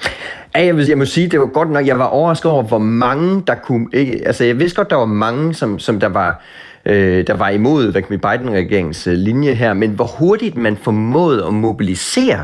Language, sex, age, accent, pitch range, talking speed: Danish, male, 30-49, native, 95-130 Hz, 210 wpm